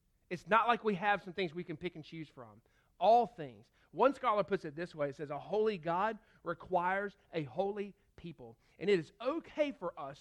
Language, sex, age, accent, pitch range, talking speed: English, male, 40-59, American, 155-205 Hz, 210 wpm